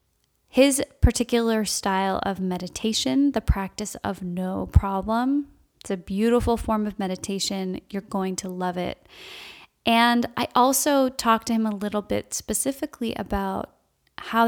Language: English